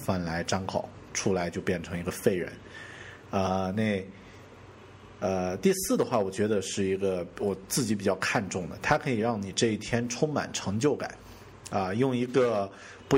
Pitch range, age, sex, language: 90-110 Hz, 50-69, male, Chinese